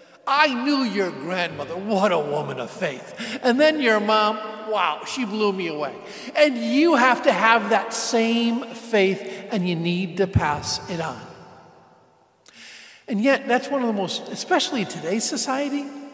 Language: English